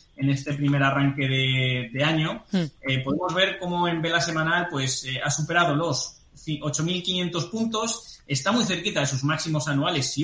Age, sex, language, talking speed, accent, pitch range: 20-39, male, Spanish, 170 wpm, Spanish, 130-150 Hz